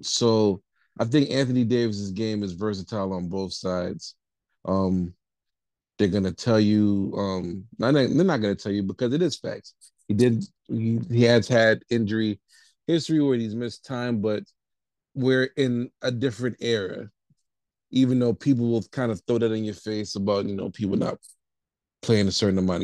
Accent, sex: American, male